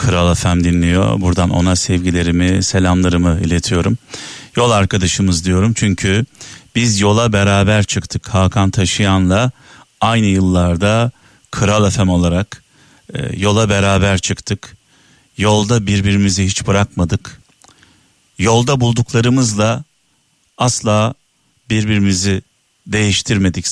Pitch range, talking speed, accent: 95-120 Hz, 90 wpm, native